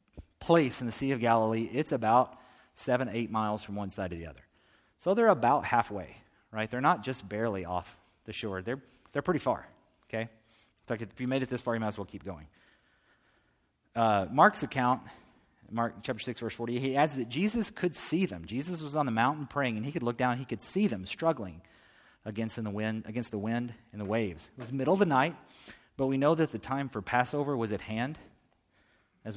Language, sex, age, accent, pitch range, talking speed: English, male, 30-49, American, 100-125 Hz, 215 wpm